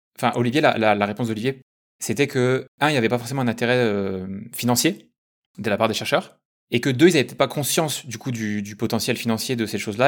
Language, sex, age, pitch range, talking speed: French, male, 20-39, 105-140 Hz, 240 wpm